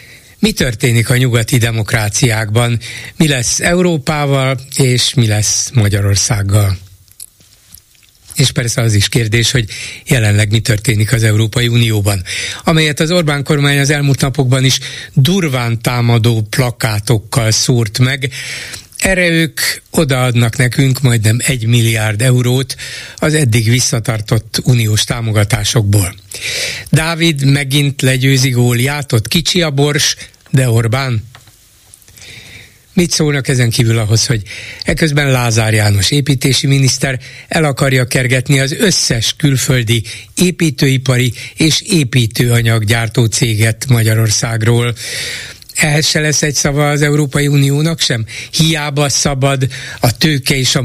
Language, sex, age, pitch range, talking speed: Hungarian, male, 60-79, 115-145 Hz, 115 wpm